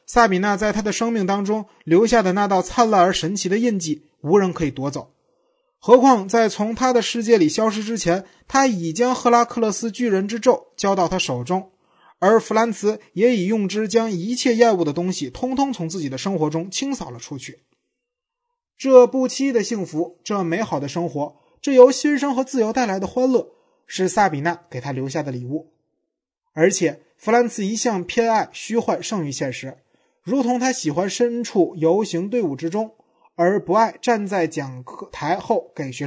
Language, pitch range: Chinese, 165-235 Hz